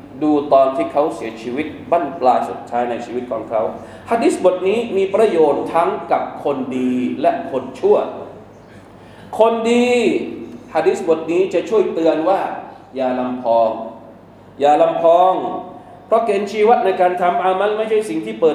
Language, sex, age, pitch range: Thai, male, 20-39, 165-215 Hz